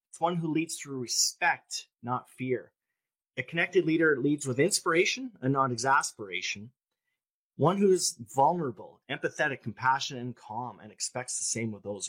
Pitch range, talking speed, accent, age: 110-150 Hz, 155 wpm, American, 30-49